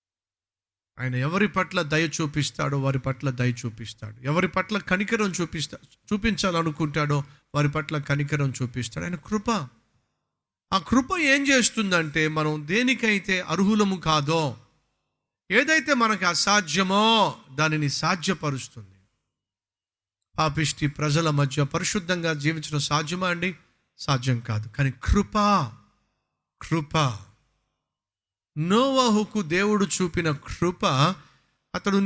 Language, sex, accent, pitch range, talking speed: Telugu, male, native, 140-215 Hz, 90 wpm